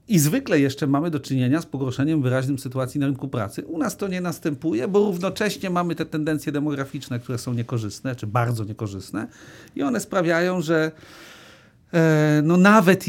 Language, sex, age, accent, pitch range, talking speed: Polish, male, 50-69, native, 120-155 Hz, 170 wpm